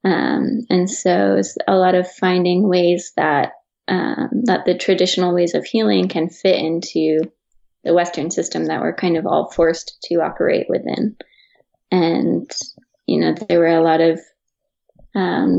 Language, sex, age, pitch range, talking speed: English, female, 20-39, 170-195 Hz, 160 wpm